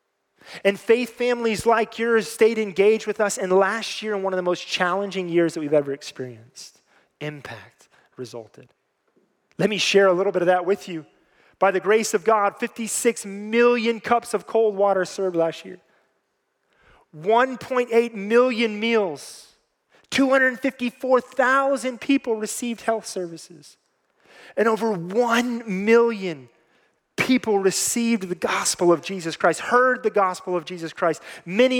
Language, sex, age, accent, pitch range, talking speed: English, male, 30-49, American, 165-225 Hz, 140 wpm